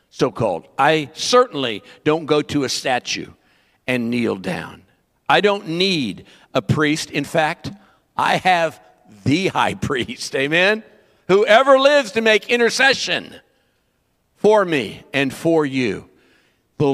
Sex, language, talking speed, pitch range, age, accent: male, English, 130 wpm, 135-180 Hz, 60-79, American